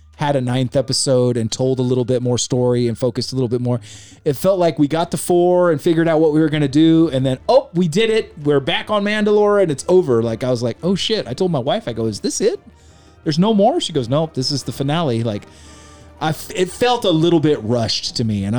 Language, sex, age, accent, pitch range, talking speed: English, male, 30-49, American, 110-160 Hz, 270 wpm